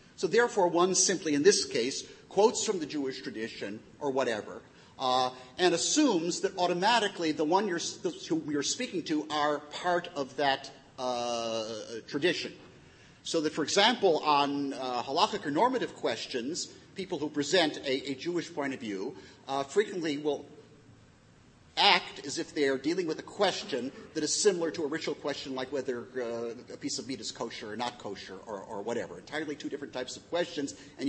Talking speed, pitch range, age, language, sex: 175 wpm, 135-185 Hz, 50-69, English, male